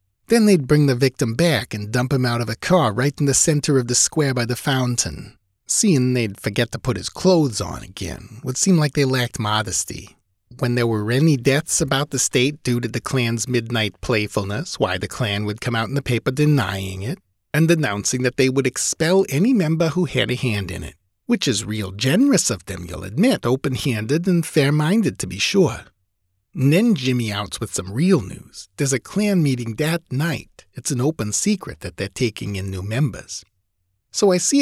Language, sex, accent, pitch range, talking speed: English, male, American, 105-160 Hz, 205 wpm